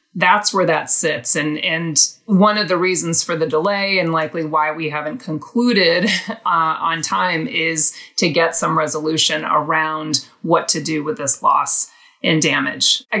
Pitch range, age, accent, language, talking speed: 160-210 Hz, 30-49, American, English, 170 wpm